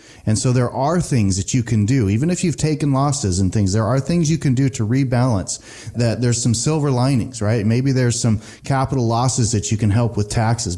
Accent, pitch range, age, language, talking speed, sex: American, 110-135 Hz, 30-49, English, 230 wpm, male